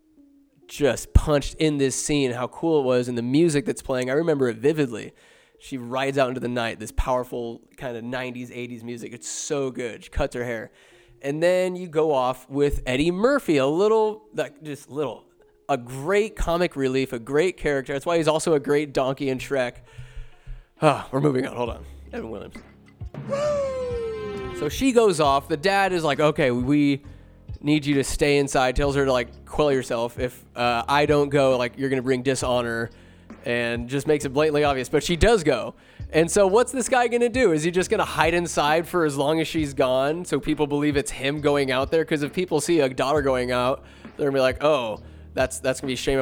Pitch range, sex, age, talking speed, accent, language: 130-165 Hz, male, 20-39, 210 wpm, American, English